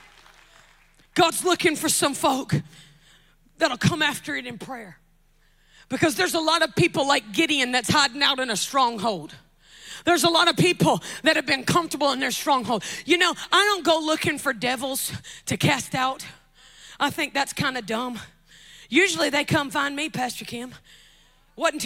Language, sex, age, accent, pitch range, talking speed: English, female, 40-59, American, 270-370 Hz, 170 wpm